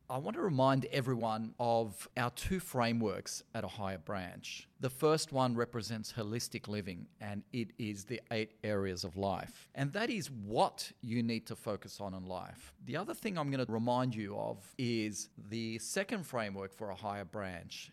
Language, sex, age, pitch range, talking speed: English, male, 40-59, 105-130 Hz, 185 wpm